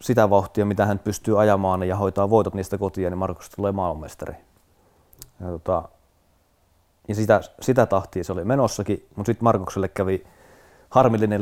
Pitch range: 95-115 Hz